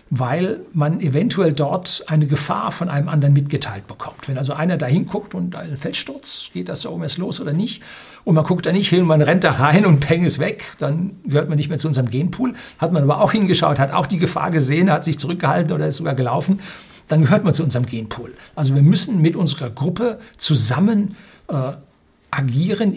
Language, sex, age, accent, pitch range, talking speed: German, male, 60-79, German, 145-180 Hz, 215 wpm